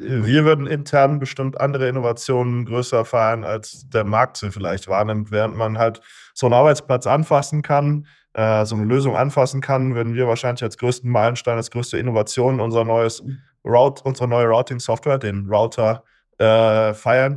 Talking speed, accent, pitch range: 160 wpm, German, 115-135 Hz